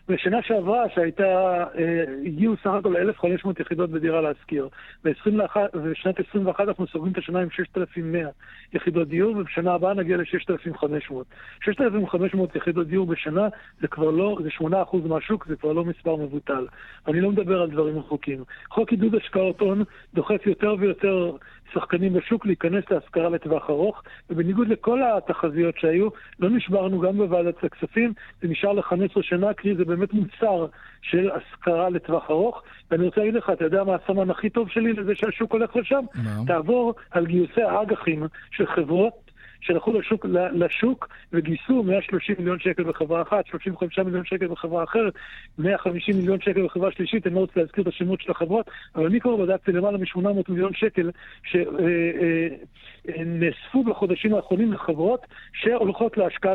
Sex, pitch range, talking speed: male, 170-205 Hz, 145 wpm